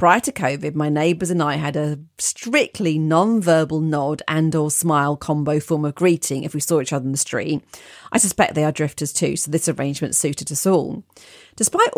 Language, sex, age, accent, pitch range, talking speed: English, female, 40-59, British, 150-195 Hz, 200 wpm